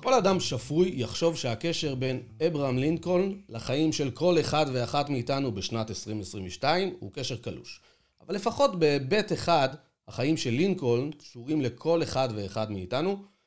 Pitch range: 120-175 Hz